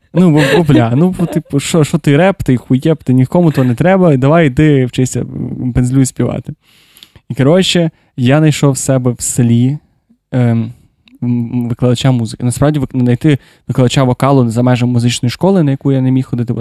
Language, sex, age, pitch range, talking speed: Ukrainian, male, 20-39, 120-150 Hz, 170 wpm